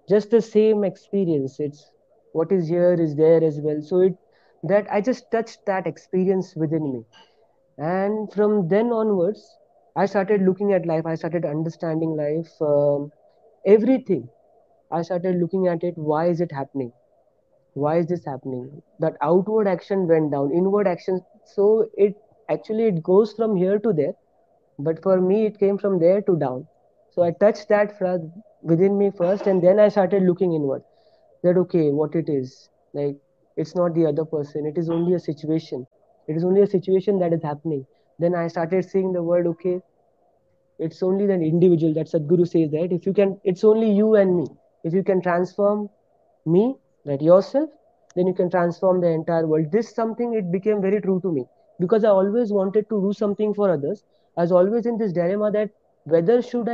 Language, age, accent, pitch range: English, 30-49, Indian, 165-205 Hz